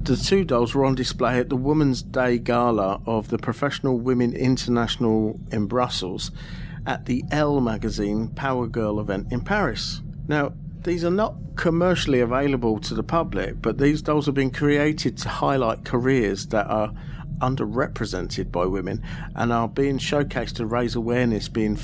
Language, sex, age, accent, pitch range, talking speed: English, male, 50-69, British, 110-150 Hz, 160 wpm